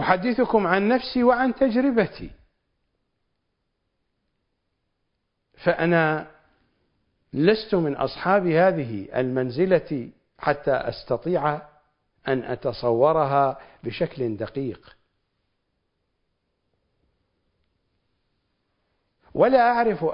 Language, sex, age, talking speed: Arabic, male, 50-69, 55 wpm